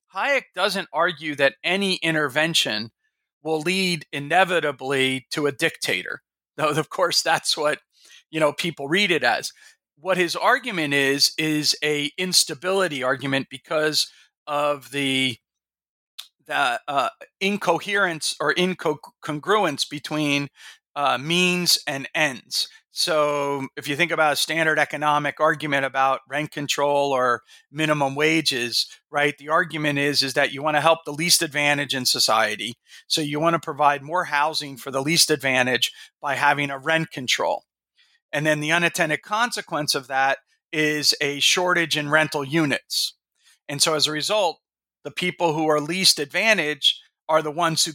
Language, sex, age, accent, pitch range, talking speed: English, male, 40-59, American, 140-165 Hz, 150 wpm